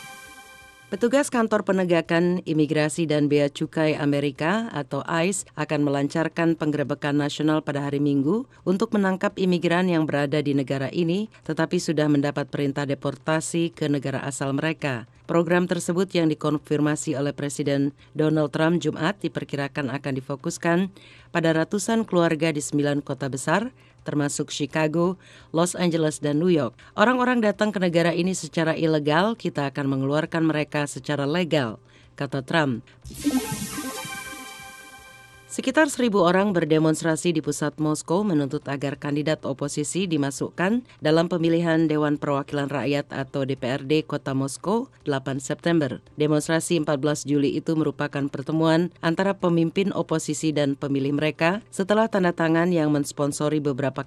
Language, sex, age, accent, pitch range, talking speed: English, female, 40-59, Indonesian, 145-170 Hz, 130 wpm